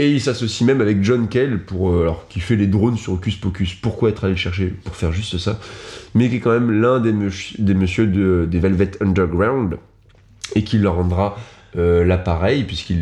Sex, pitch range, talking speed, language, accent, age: male, 90-110 Hz, 210 wpm, French, French, 20-39